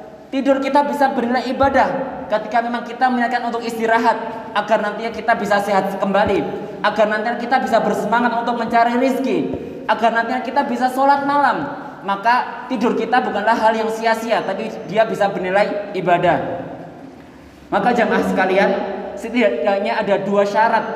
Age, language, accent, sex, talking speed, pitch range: 20-39, Indonesian, native, male, 145 wpm, 180-230 Hz